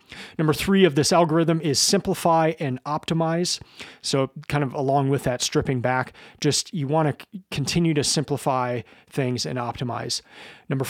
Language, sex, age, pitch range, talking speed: English, male, 30-49, 130-150 Hz, 160 wpm